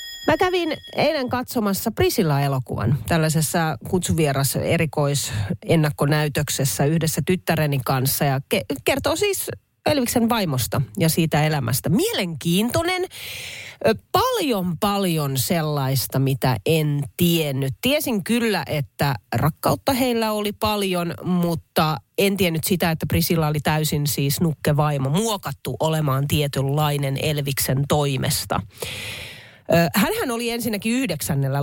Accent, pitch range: native, 140-195 Hz